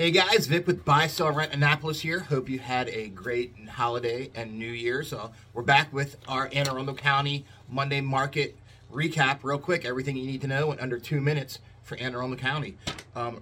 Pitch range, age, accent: 115-140 Hz, 30-49, American